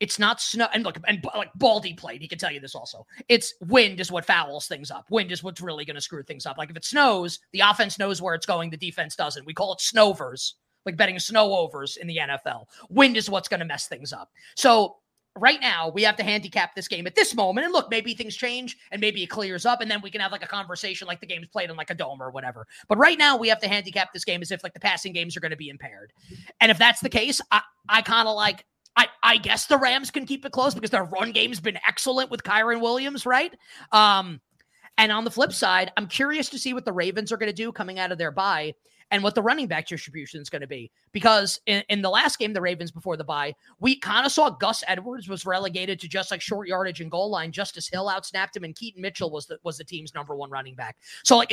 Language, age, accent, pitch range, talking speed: English, 30-49, American, 175-235 Hz, 265 wpm